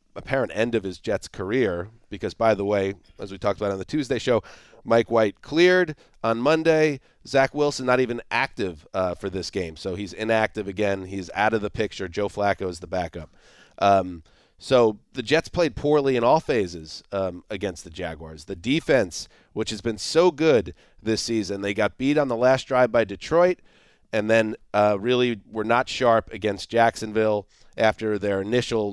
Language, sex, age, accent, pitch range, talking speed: English, male, 30-49, American, 105-135 Hz, 185 wpm